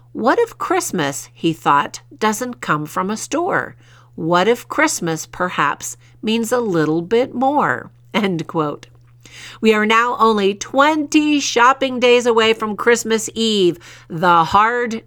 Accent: American